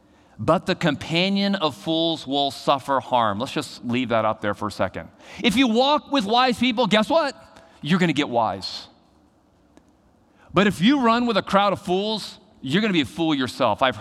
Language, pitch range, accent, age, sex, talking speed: English, 145-240 Hz, American, 40-59, male, 200 wpm